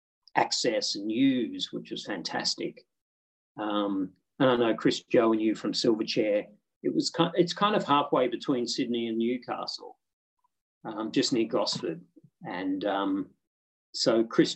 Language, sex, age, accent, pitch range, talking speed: English, male, 40-59, Australian, 105-140 Hz, 145 wpm